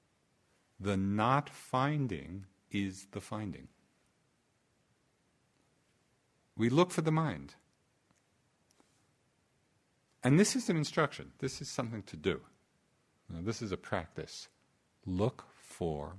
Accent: American